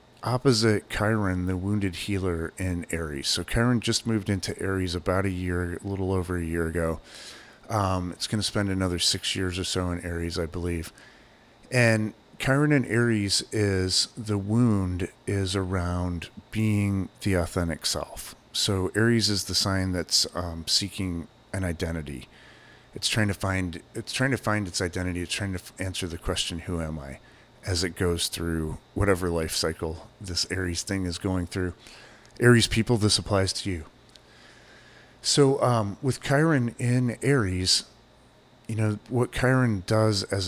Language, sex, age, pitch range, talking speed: English, male, 40-59, 90-110 Hz, 160 wpm